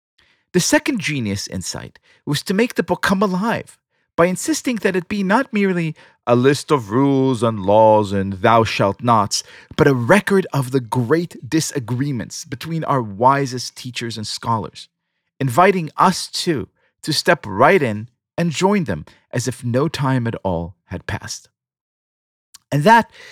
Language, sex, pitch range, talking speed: English, male, 115-175 Hz, 155 wpm